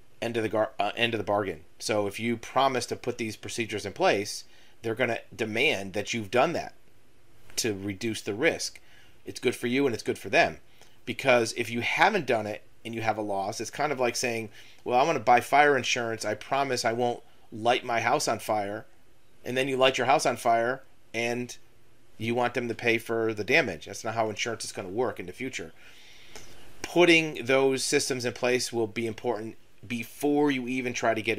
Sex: male